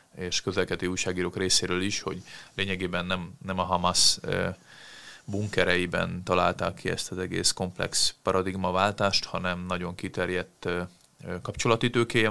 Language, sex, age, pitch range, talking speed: Hungarian, male, 30-49, 90-95 Hz, 110 wpm